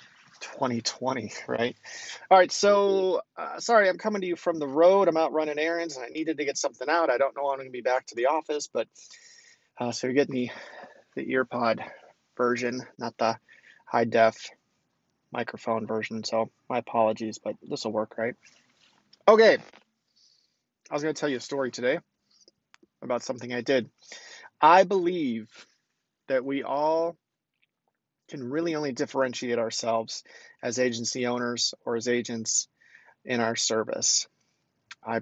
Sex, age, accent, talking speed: male, 30-49, American, 155 wpm